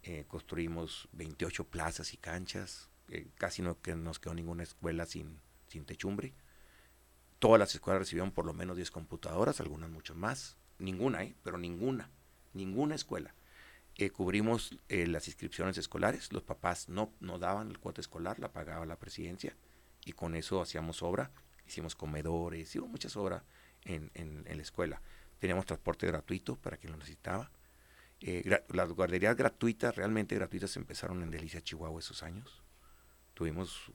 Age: 50-69